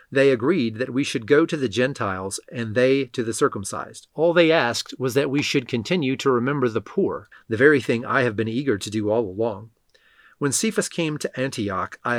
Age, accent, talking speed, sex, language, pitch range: 30-49, American, 210 wpm, male, English, 115-145 Hz